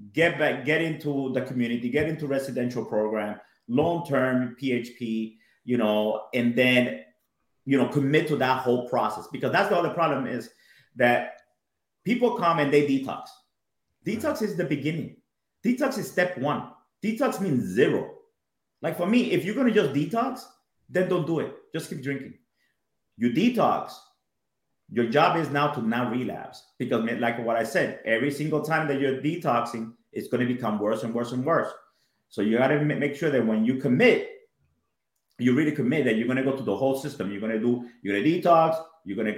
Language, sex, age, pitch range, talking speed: English, male, 30-49, 115-155 Hz, 190 wpm